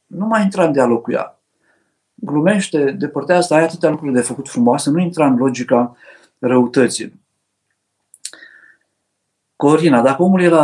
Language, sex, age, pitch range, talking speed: Romanian, male, 50-69, 130-170 Hz, 145 wpm